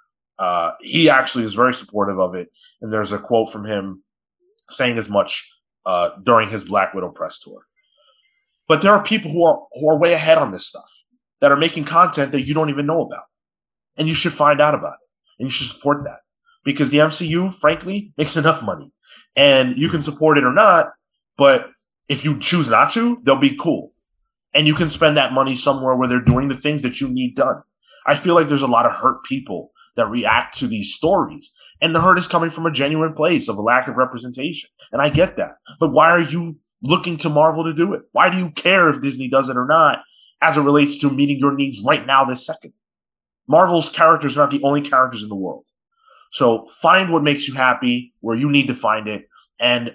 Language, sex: English, male